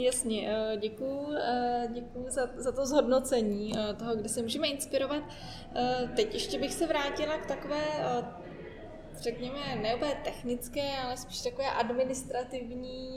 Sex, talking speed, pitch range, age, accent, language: female, 120 wpm, 210-240 Hz, 20-39, native, Czech